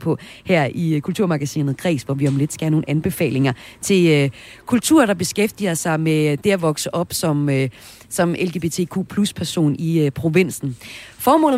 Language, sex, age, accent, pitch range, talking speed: Danish, female, 30-49, native, 155-200 Hz, 170 wpm